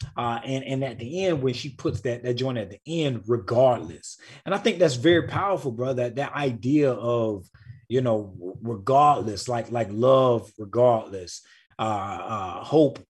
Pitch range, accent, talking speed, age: 115-140 Hz, American, 170 wpm, 30-49